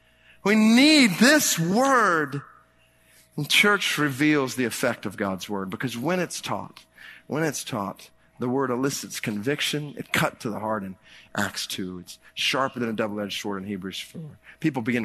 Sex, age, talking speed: male, 40-59, 170 wpm